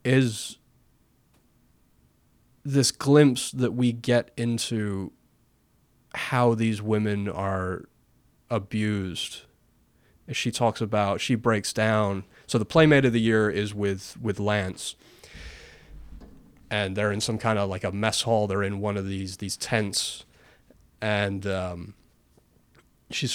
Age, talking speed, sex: 20-39, 125 wpm, male